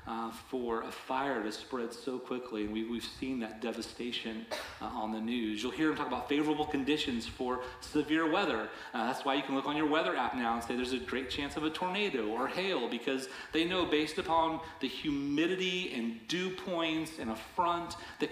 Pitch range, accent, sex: 115-155 Hz, American, male